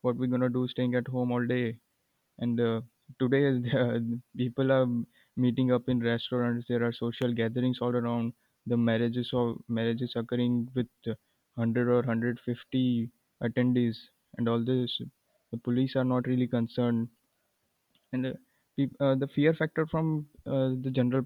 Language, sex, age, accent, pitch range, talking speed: English, male, 20-39, Indian, 120-130 Hz, 150 wpm